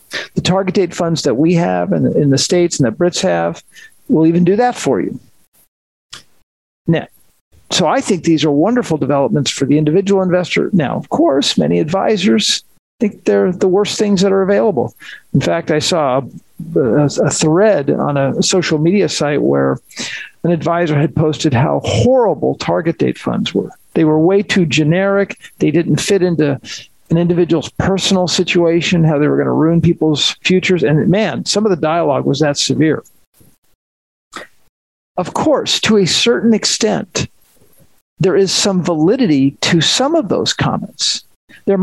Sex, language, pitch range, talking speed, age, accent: male, English, 145-190 Hz, 165 wpm, 50-69, American